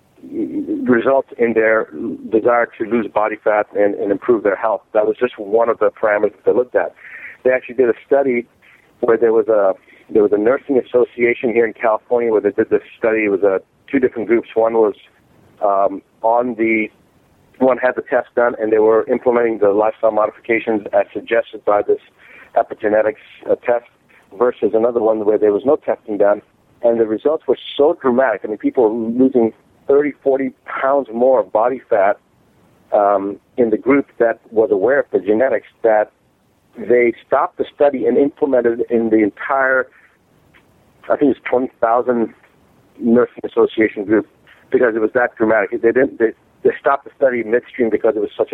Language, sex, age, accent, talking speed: English, male, 50-69, American, 180 wpm